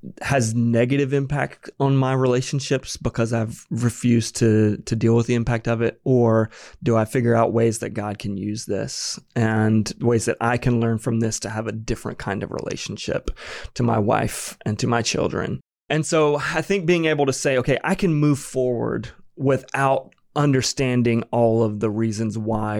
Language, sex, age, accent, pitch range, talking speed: English, male, 30-49, American, 115-130 Hz, 185 wpm